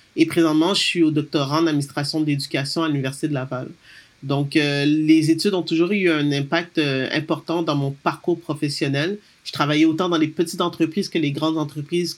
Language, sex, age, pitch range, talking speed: French, male, 40-59, 150-175 Hz, 195 wpm